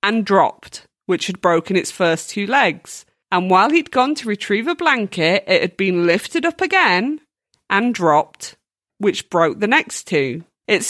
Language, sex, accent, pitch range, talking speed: English, female, British, 175-230 Hz, 170 wpm